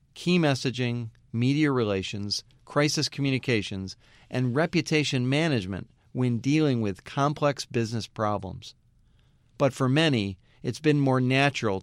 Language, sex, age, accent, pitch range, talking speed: English, male, 40-59, American, 115-145 Hz, 110 wpm